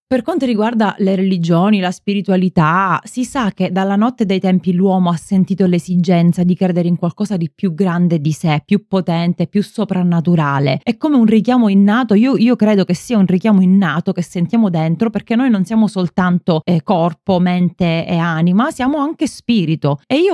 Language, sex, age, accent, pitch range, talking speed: Italian, female, 20-39, native, 175-235 Hz, 185 wpm